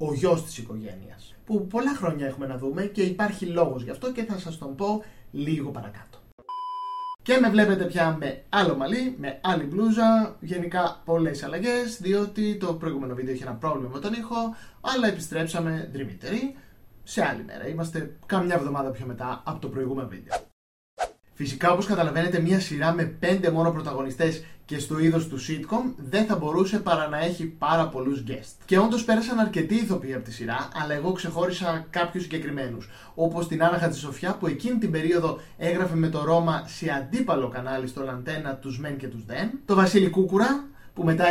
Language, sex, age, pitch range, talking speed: Greek, male, 30-49, 140-190 Hz, 180 wpm